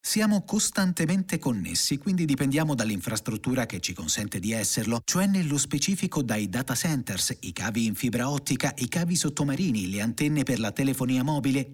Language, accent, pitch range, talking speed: Italian, native, 120-165 Hz, 160 wpm